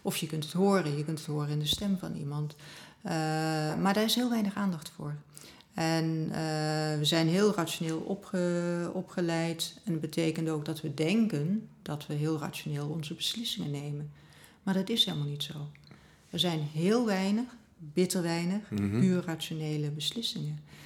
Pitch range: 155-180 Hz